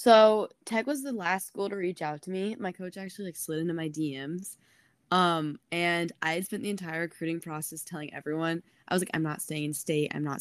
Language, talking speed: English, 225 wpm